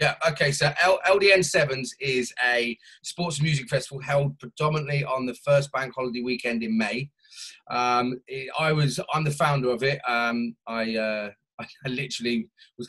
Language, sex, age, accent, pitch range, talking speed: English, male, 30-49, British, 115-145 Hz, 160 wpm